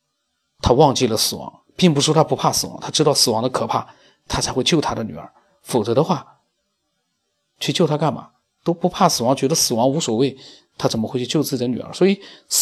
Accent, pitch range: native, 120-155 Hz